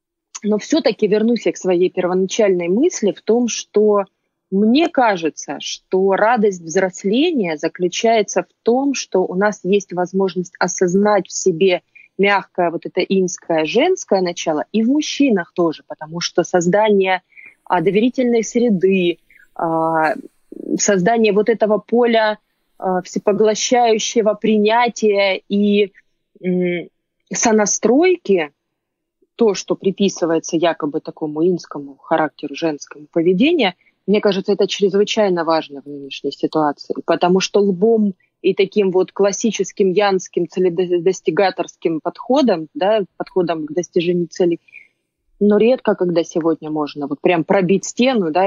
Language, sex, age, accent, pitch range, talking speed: Russian, female, 20-39, native, 175-215 Hz, 115 wpm